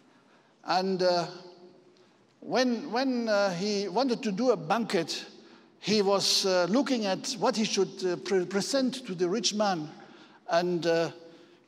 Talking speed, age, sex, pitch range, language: 145 wpm, 60-79, male, 200-260 Hz, English